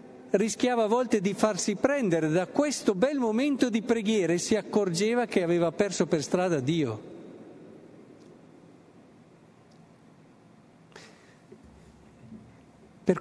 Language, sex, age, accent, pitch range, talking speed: Italian, male, 50-69, native, 145-195 Hz, 100 wpm